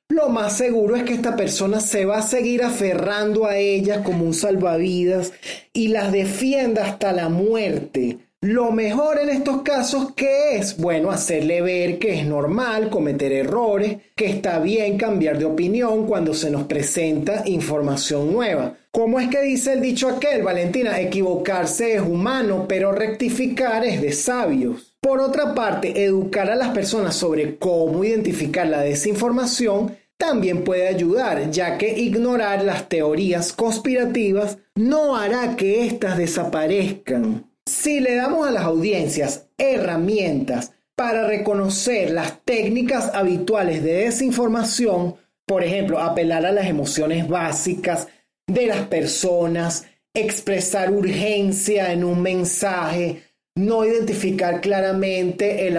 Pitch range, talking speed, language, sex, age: 175-230 Hz, 135 wpm, Spanish, male, 30-49